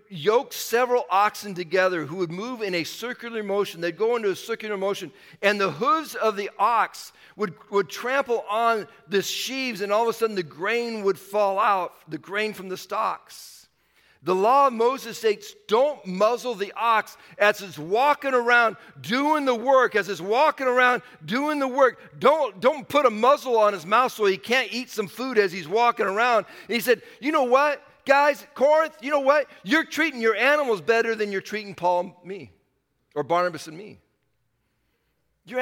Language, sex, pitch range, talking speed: English, male, 150-250 Hz, 190 wpm